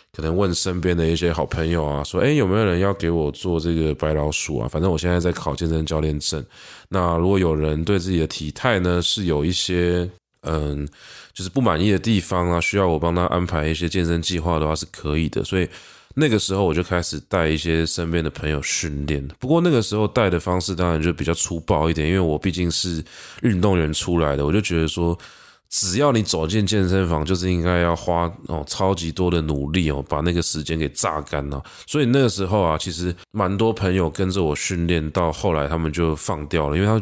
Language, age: Chinese, 20-39